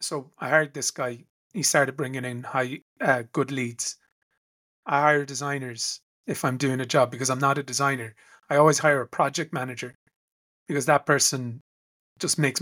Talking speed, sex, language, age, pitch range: 175 wpm, male, English, 30-49, 130-155 Hz